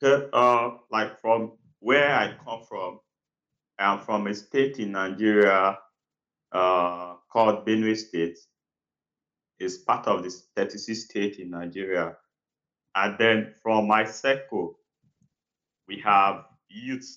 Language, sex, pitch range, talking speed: English, male, 95-115 Hz, 120 wpm